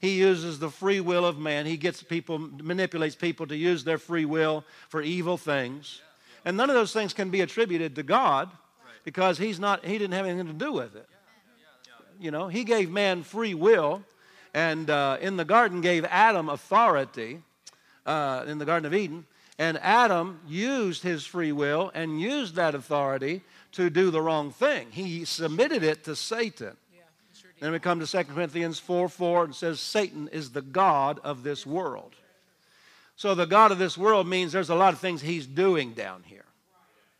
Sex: male